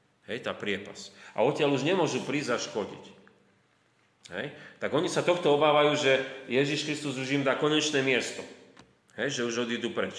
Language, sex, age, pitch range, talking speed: Slovak, male, 30-49, 110-140 Hz, 170 wpm